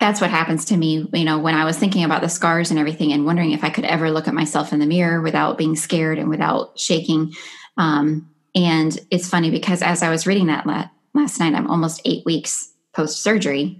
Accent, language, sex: American, English, female